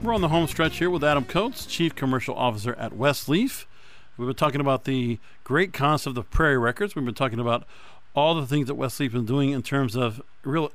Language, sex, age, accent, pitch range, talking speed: English, male, 50-69, American, 125-165 Hz, 230 wpm